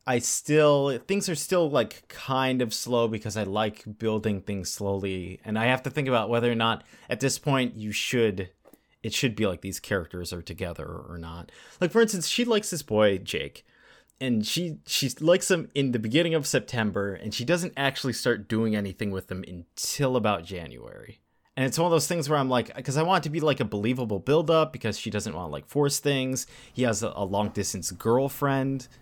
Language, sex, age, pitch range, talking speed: English, male, 30-49, 105-135 Hz, 210 wpm